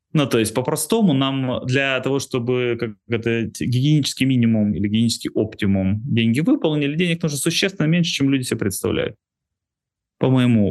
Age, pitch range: 20-39, 100-140 Hz